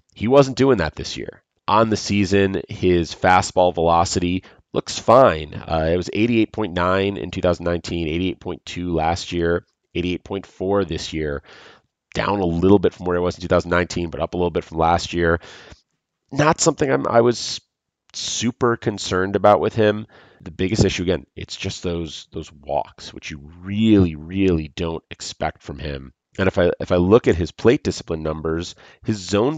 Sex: male